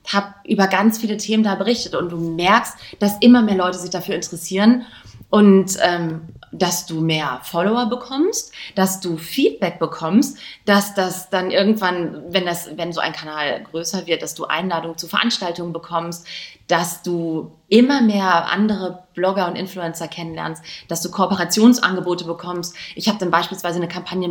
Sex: female